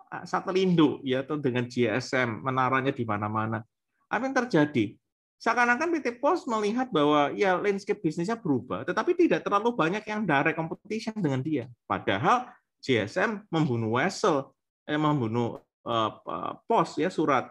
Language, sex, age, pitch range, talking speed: Indonesian, male, 30-49, 120-160 Hz, 135 wpm